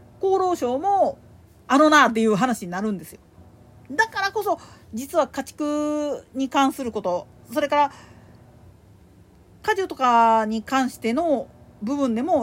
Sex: female